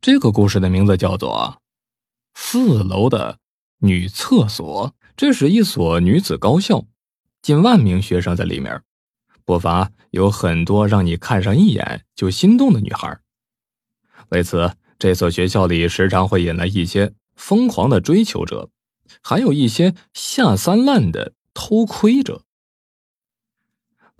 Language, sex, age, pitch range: Chinese, male, 20-39, 90-150 Hz